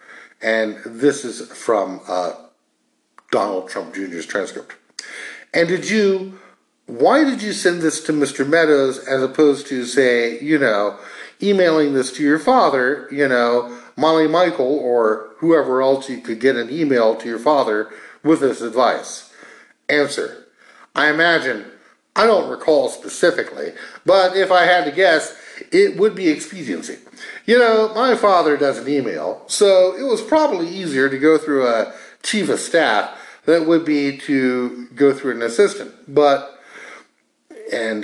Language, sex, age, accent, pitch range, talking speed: English, male, 60-79, American, 120-190 Hz, 150 wpm